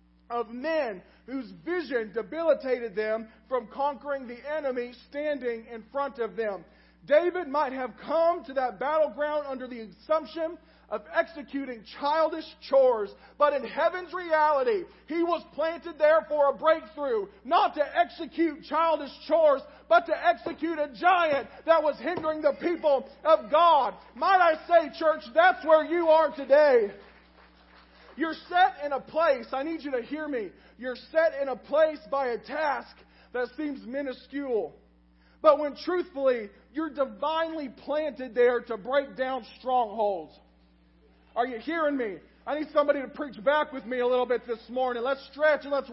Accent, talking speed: American, 155 wpm